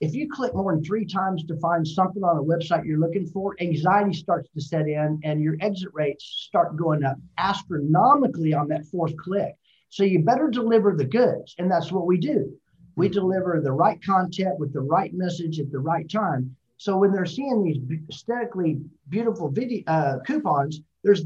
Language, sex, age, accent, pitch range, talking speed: English, male, 50-69, American, 150-200 Hz, 190 wpm